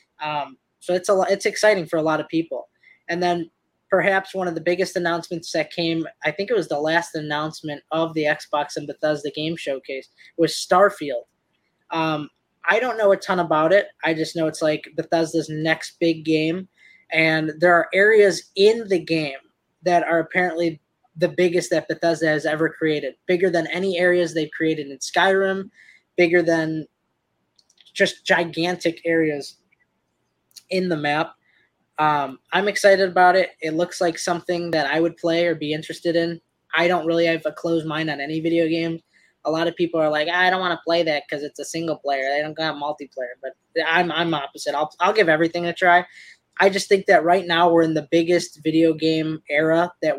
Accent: American